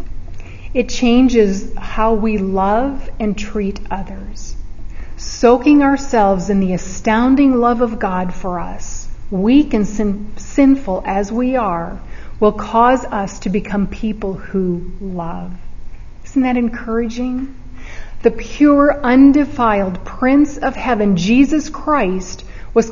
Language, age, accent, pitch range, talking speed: English, 40-59, American, 195-250 Hz, 120 wpm